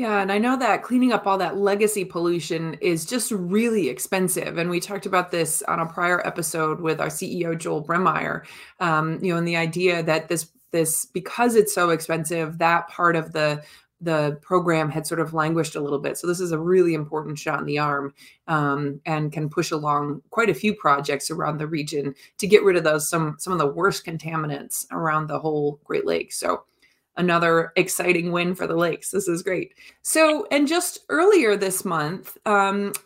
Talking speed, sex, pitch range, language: 200 wpm, female, 160-200 Hz, English